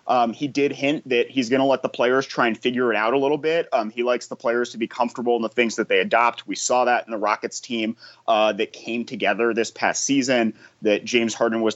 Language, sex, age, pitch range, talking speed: English, male, 30-49, 115-130 Hz, 260 wpm